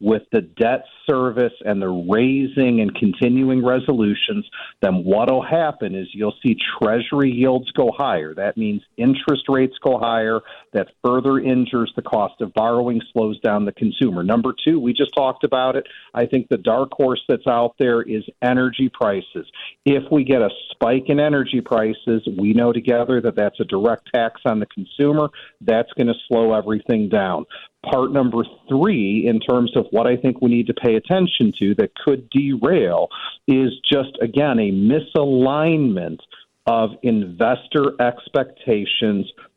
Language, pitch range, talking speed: English, 115-140 Hz, 160 wpm